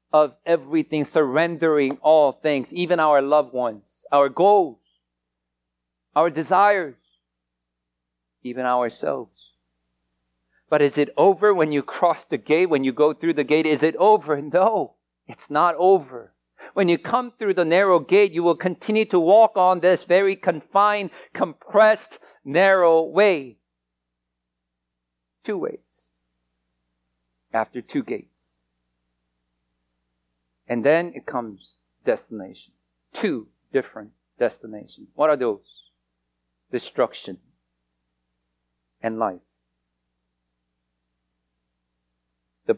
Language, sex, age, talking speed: English, male, 50-69, 105 wpm